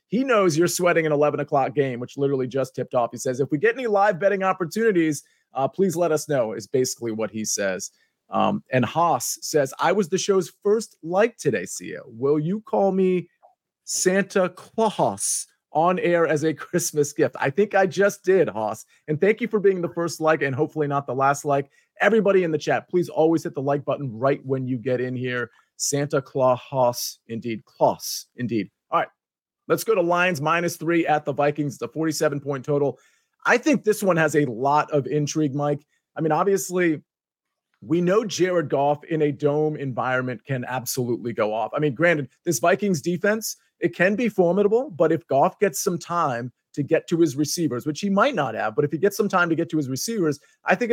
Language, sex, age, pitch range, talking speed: English, male, 30-49, 140-185 Hz, 205 wpm